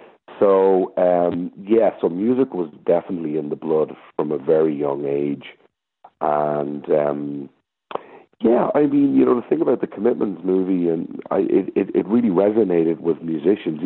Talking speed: 155 wpm